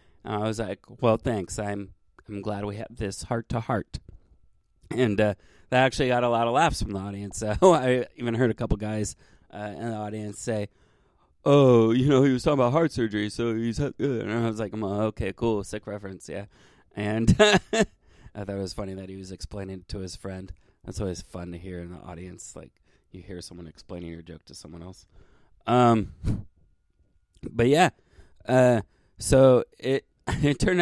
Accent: American